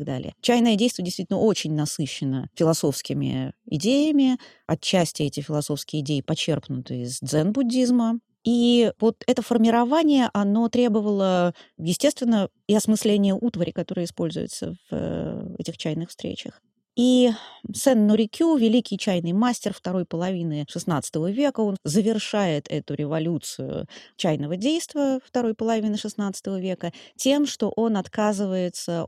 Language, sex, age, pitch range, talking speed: Russian, female, 30-49, 160-230 Hz, 110 wpm